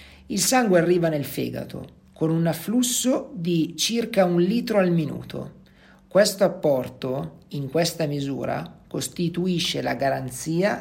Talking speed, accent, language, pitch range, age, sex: 120 wpm, native, Italian, 145-185 Hz, 50-69, male